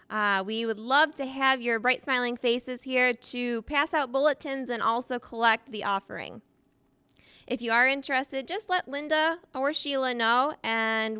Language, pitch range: English, 225-275 Hz